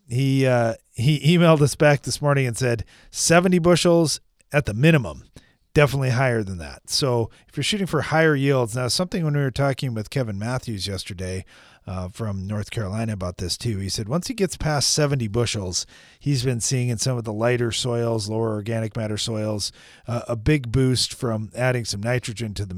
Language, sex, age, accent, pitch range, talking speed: English, male, 40-59, American, 110-140 Hz, 195 wpm